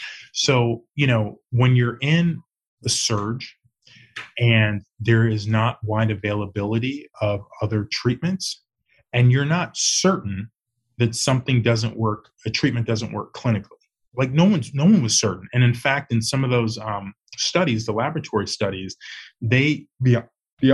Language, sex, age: English, male, 20-39